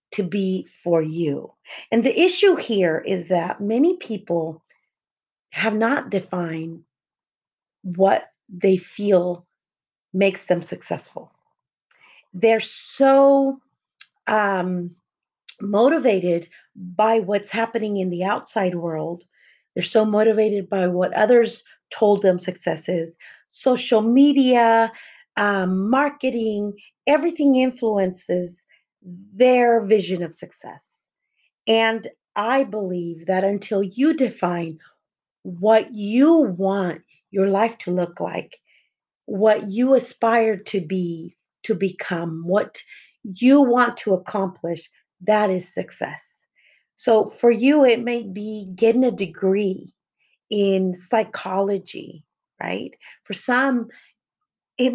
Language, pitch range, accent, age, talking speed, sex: English, 185-235 Hz, American, 40-59, 105 wpm, female